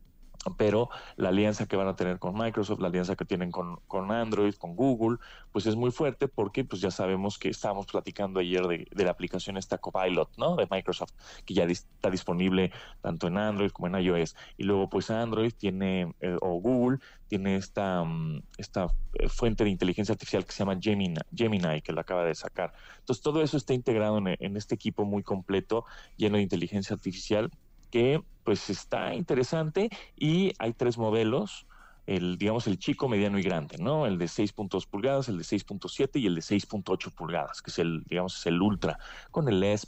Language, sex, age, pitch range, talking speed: Spanish, male, 30-49, 90-110 Hz, 195 wpm